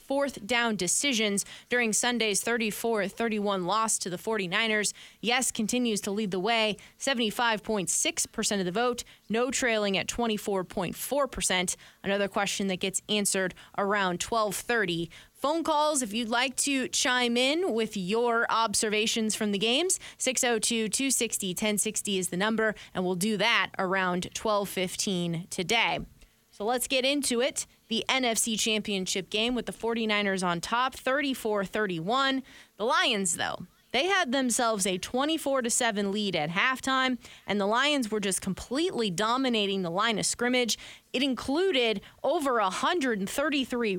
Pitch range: 200-250 Hz